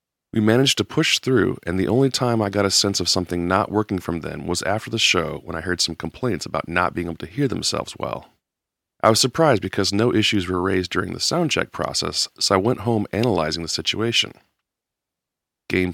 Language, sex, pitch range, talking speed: English, male, 90-115 Hz, 215 wpm